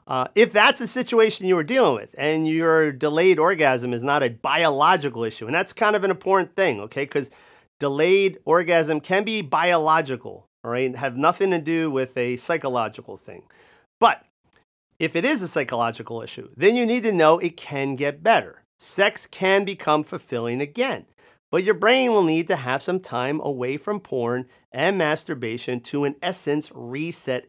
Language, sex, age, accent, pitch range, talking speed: English, male, 40-59, American, 135-190 Hz, 175 wpm